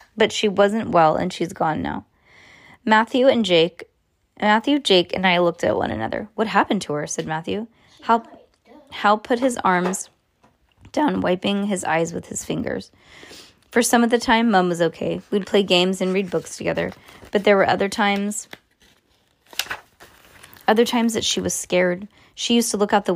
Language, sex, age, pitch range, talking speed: English, female, 20-39, 175-220 Hz, 180 wpm